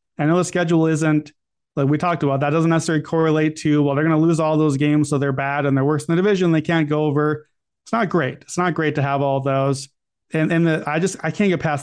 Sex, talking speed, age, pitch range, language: male, 275 wpm, 30-49, 145-165 Hz, English